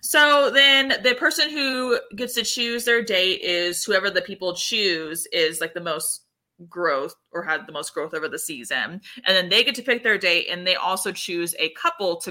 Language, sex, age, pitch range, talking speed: English, female, 20-39, 175-240 Hz, 210 wpm